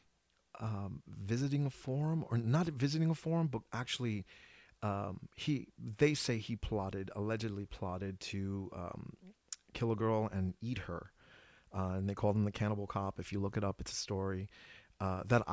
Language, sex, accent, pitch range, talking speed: English, male, American, 100-125 Hz, 175 wpm